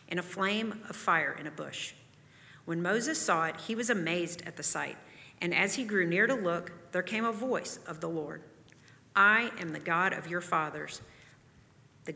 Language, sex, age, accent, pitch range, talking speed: English, female, 40-59, American, 165-220 Hz, 195 wpm